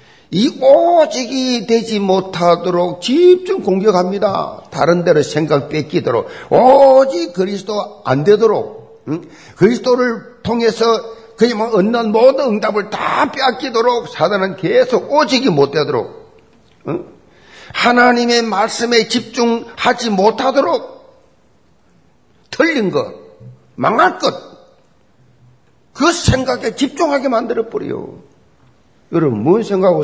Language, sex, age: Korean, male, 50-69